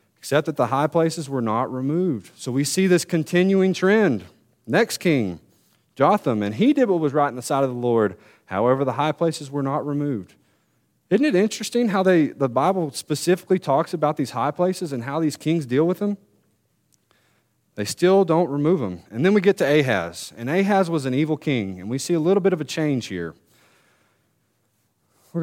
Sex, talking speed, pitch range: male, 200 wpm, 130-175 Hz